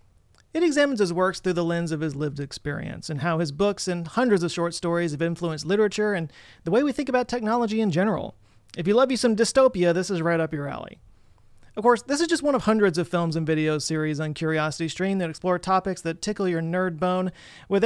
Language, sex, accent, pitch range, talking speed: English, male, American, 155-210 Hz, 230 wpm